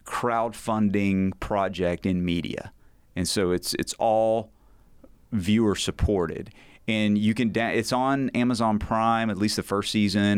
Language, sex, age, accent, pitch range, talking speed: English, male, 30-49, American, 90-110 Hz, 135 wpm